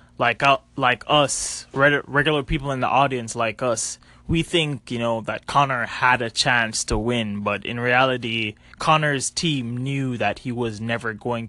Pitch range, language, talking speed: 115-145 Hz, English, 170 wpm